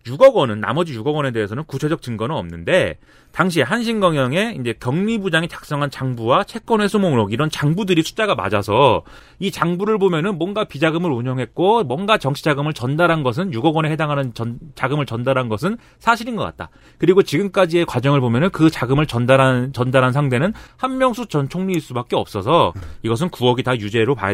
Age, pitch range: 30-49, 130-190 Hz